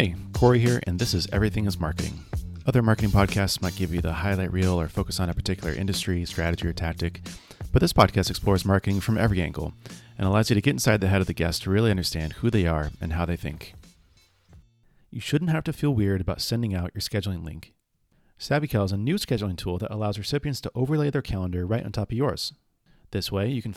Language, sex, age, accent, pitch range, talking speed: English, male, 30-49, American, 90-120 Hz, 225 wpm